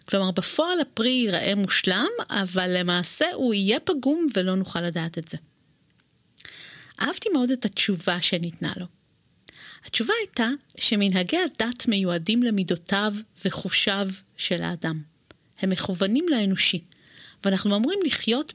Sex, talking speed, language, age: female, 115 wpm, Hebrew, 40-59